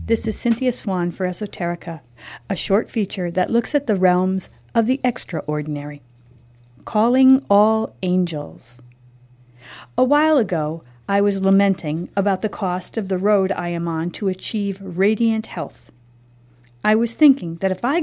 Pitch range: 160-230 Hz